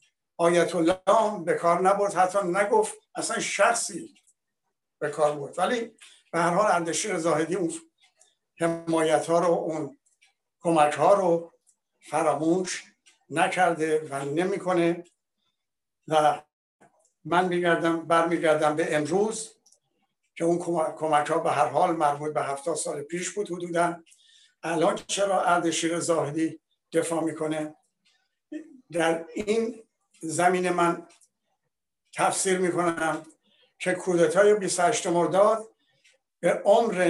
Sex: male